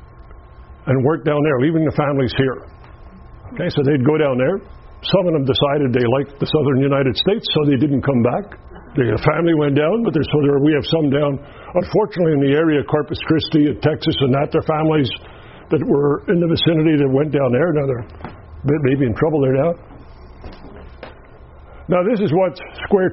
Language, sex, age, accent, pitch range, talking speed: English, male, 60-79, American, 135-170 Hz, 195 wpm